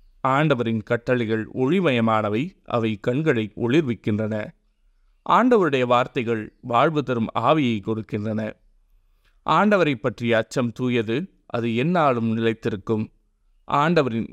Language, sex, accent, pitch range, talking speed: Tamil, male, native, 110-130 Hz, 90 wpm